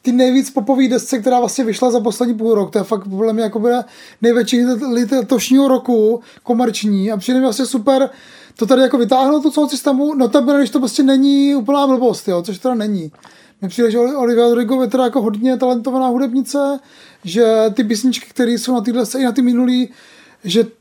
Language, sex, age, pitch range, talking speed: Czech, male, 20-39, 225-260 Hz, 195 wpm